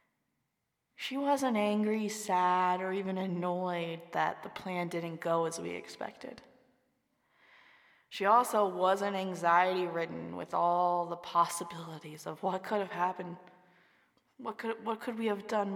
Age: 20-39